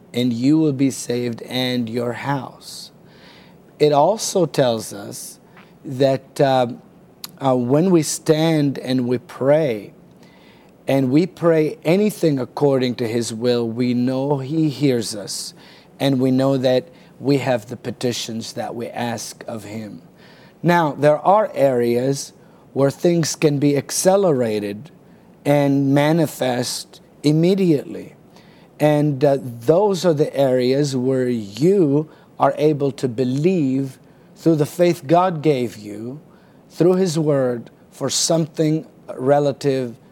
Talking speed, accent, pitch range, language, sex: 125 wpm, American, 125-160 Hz, English, male